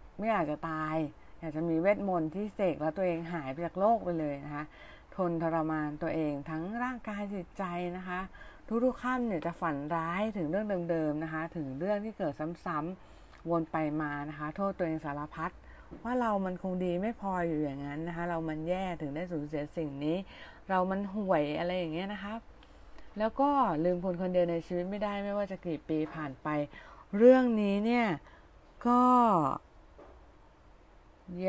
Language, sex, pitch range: Thai, female, 155-195 Hz